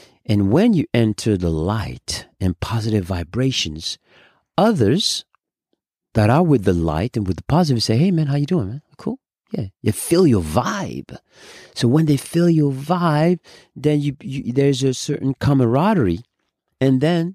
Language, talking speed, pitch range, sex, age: German, 165 wpm, 100-145 Hz, male, 40-59